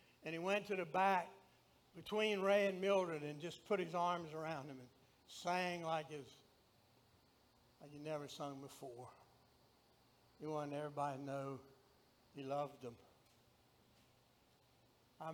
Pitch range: 135-170 Hz